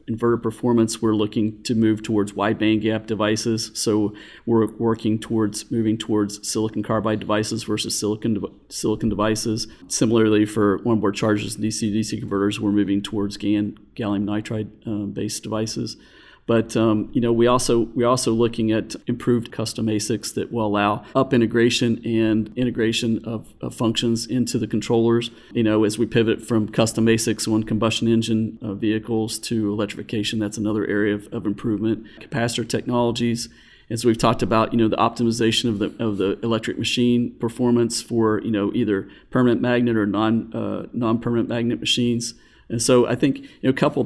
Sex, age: male, 40-59